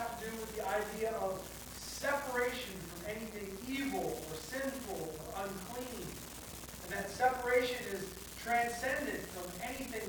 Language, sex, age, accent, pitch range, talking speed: English, male, 40-59, American, 220-270 Hz, 120 wpm